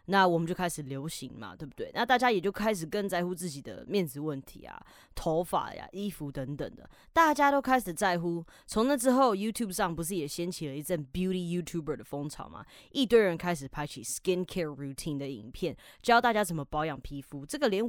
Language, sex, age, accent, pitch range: Chinese, female, 20-39, American, 170-245 Hz